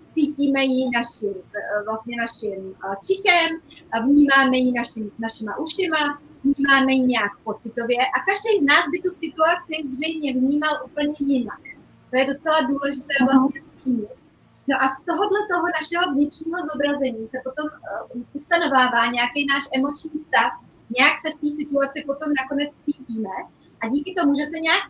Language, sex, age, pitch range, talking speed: Czech, female, 30-49, 240-305 Hz, 145 wpm